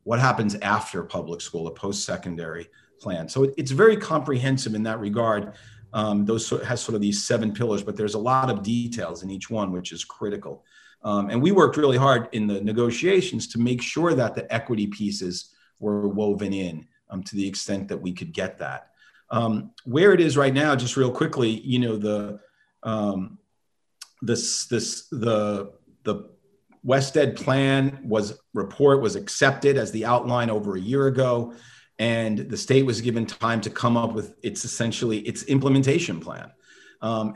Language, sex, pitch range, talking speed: English, male, 105-125 Hz, 180 wpm